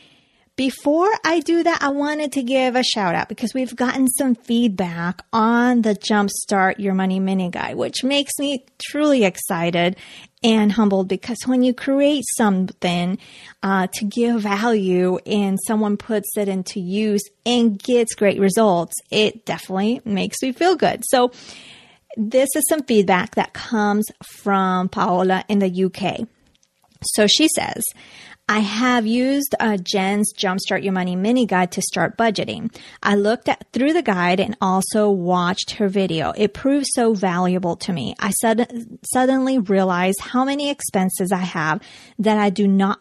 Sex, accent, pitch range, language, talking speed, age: female, American, 195-250 Hz, English, 160 wpm, 30-49